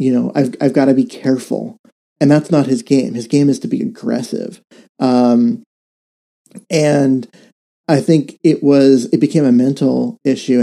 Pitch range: 130-145 Hz